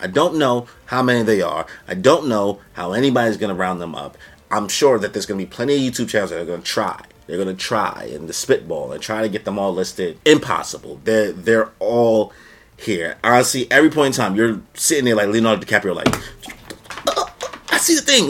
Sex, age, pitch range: male, 30-49, 100-140 Hz